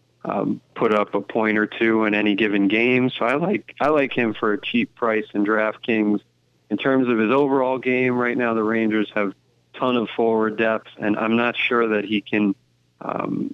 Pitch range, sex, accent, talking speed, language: 105-115 Hz, male, American, 205 wpm, English